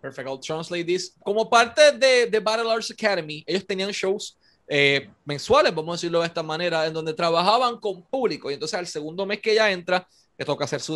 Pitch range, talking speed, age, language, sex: 155-210 Hz, 210 wpm, 20-39, Spanish, male